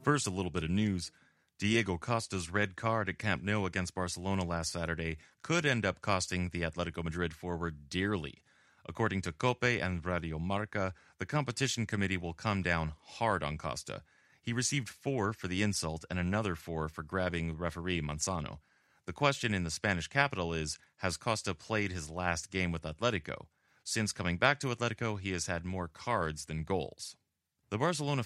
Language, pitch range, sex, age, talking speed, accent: English, 85-110 Hz, male, 30-49, 175 wpm, American